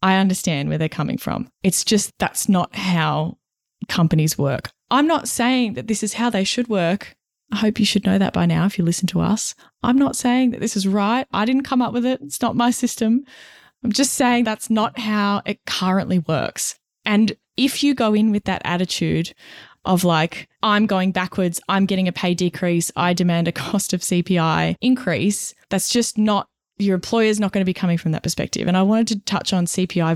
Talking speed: 215 wpm